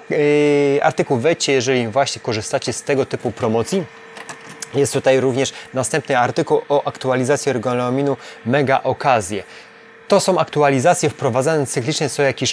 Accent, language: native, Polish